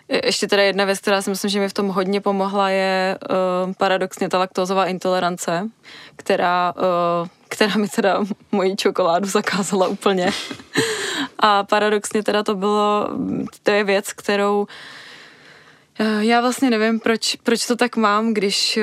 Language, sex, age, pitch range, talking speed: Czech, female, 20-39, 185-205 Hz, 135 wpm